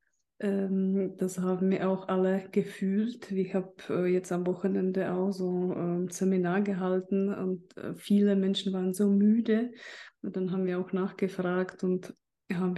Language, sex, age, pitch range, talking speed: German, female, 20-39, 185-200 Hz, 140 wpm